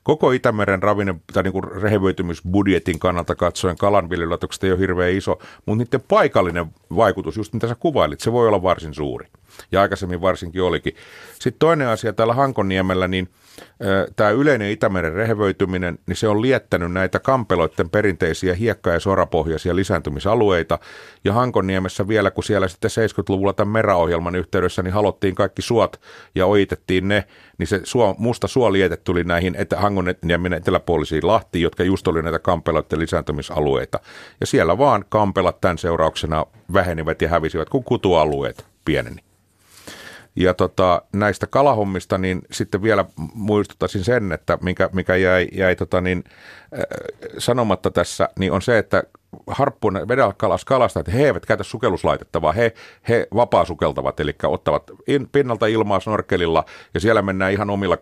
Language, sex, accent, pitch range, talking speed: Finnish, male, native, 90-105 Hz, 150 wpm